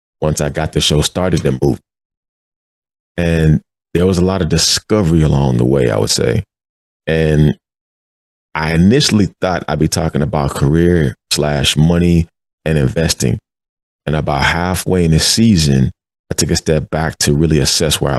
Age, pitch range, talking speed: 30-49, 70-85 Hz, 160 wpm